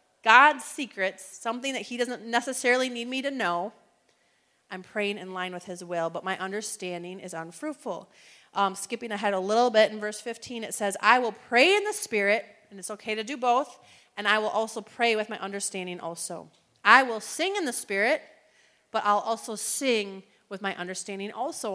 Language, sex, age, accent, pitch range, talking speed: English, female, 30-49, American, 200-255 Hz, 190 wpm